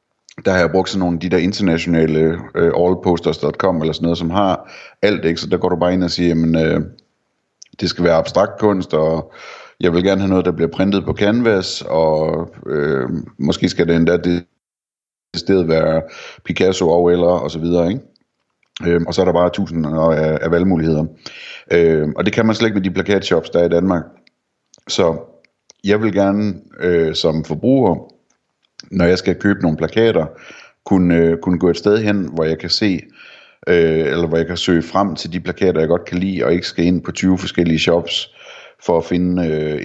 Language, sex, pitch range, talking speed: Danish, male, 80-95 Hz, 195 wpm